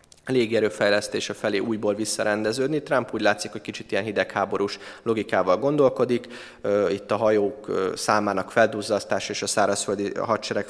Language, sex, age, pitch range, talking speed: Hungarian, male, 20-39, 100-115 Hz, 125 wpm